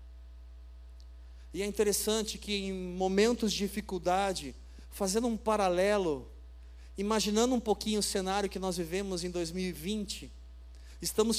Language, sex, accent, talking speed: Portuguese, male, Brazilian, 115 wpm